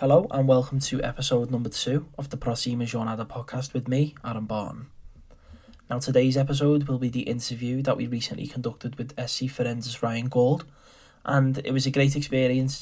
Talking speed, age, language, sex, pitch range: 180 wpm, 20-39, English, male, 115-130 Hz